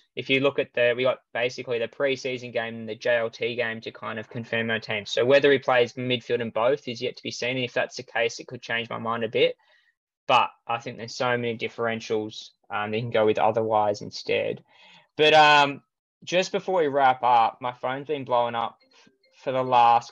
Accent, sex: Australian, male